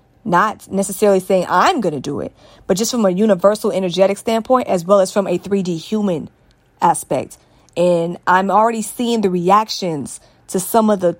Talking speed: 175 wpm